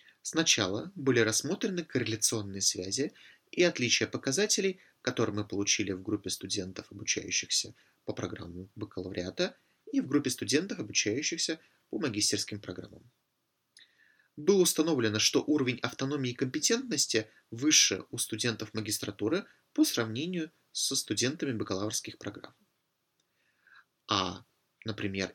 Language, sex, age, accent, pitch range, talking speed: Russian, male, 30-49, native, 105-155 Hz, 105 wpm